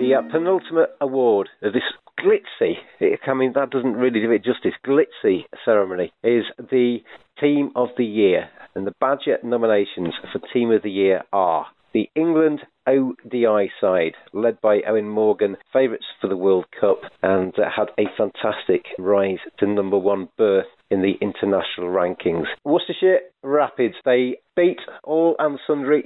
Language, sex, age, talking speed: English, male, 40-59, 155 wpm